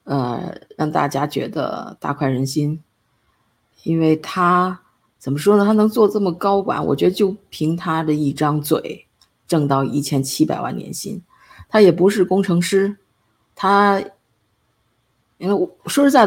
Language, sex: Chinese, female